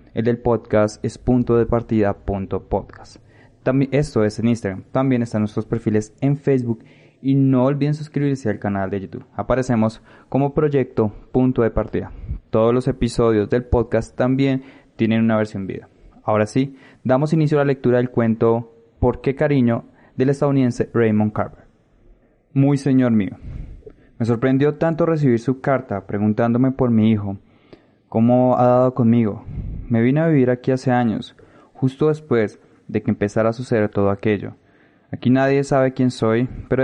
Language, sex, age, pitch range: Spanish, male, 20-39, 110-130 Hz